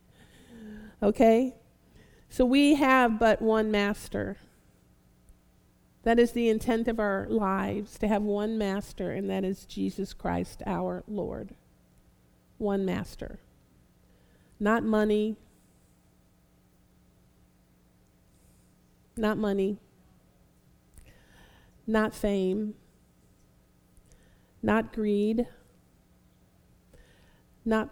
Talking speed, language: 75 wpm, English